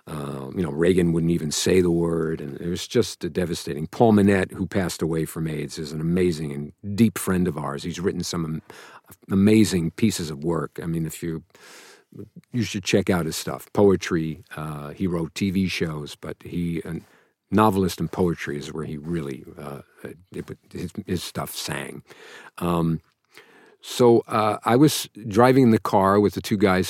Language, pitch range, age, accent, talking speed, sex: English, 80-110 Hz, 50-69, American, 185 wpm, male